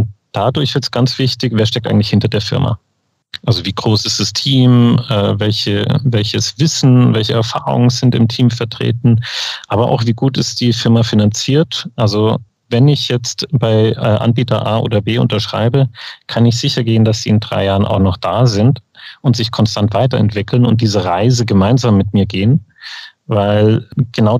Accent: German